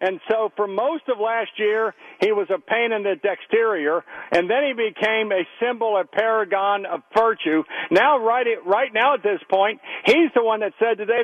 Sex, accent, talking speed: male, American, 200 wpm